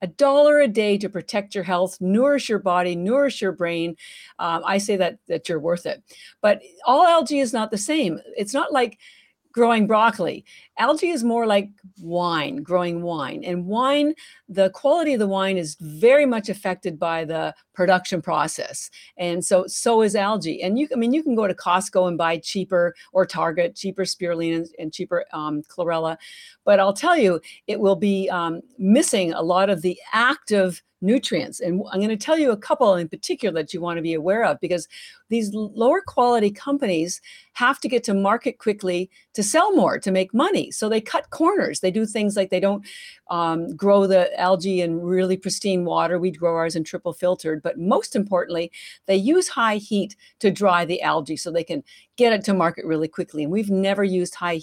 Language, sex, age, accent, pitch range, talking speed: English, female, 50-69, American, 175-230 Hz, 195 wpm